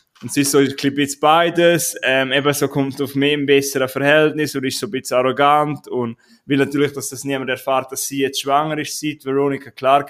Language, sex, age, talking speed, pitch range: German, male, 20-39, 215 wpm, 135-155 Hz